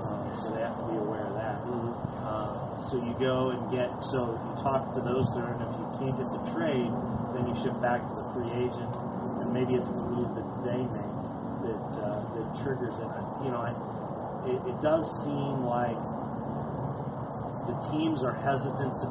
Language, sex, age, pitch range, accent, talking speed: English, male, 30-49, 120-130 Hz, American, 190 wpm